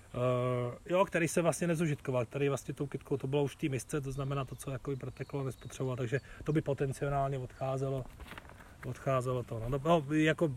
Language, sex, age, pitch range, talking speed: Czech, male, 30-49, 125-150 Hz, 180 wpm